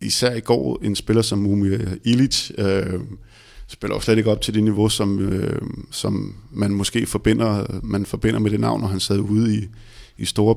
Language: Danish